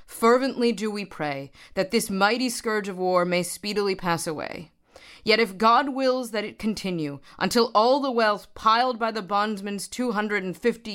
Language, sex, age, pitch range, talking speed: English, female, 30-49, 175-225 Hz, 165 wpm